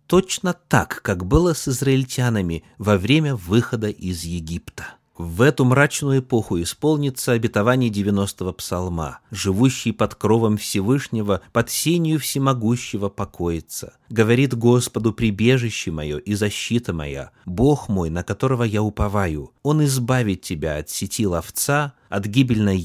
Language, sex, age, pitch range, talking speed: Russian, male, 30-49, 95-130 Hz, 125 wpm